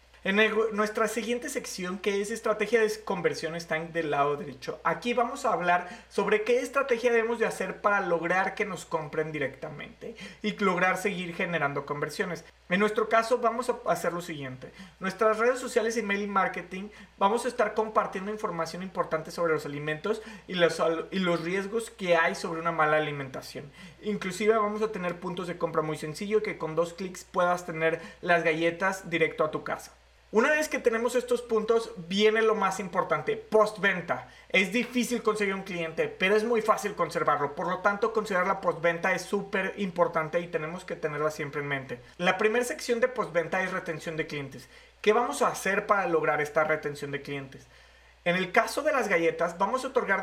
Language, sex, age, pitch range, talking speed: Spanish, male, 30-49, 165-215 Hz, 185 wpm